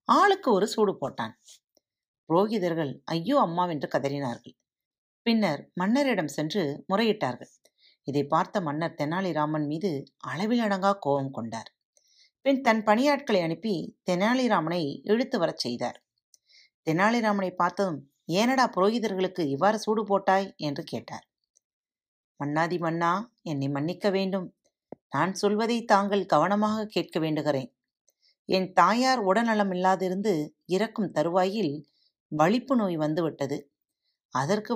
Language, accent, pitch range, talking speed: Tamil, native, 160-220 Hz, 100 wpm